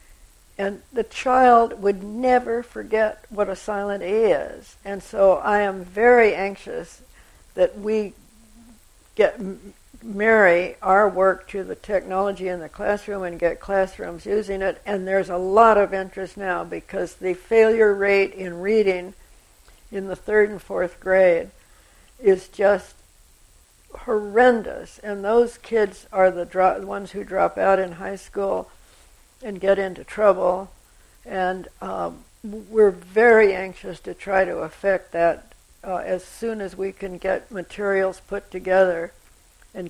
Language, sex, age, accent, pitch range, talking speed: English, female, 60-79, American, 185-210 Hz, 145 wpm